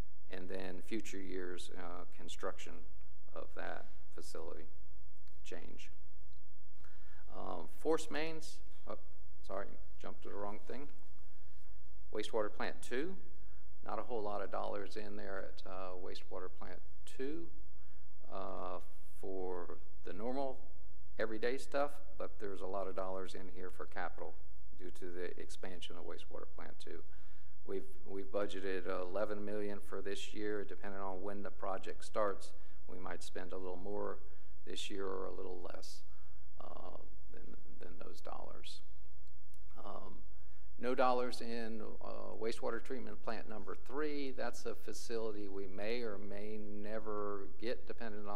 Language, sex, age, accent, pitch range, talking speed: English, male, 50-69, American, 90-100 Hz, 135 wpm